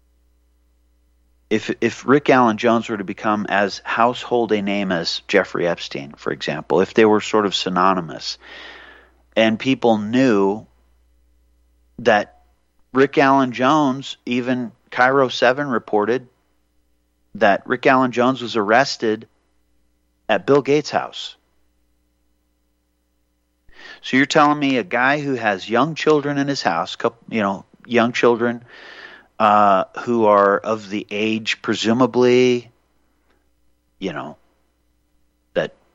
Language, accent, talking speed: English, American, 120 wpm